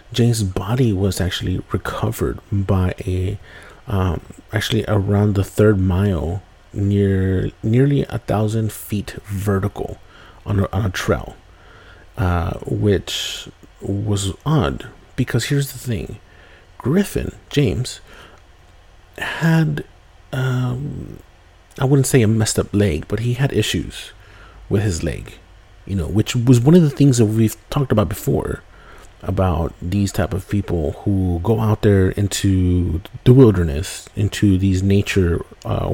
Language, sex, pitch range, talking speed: English, male, 90-110 Hz, 130 wpm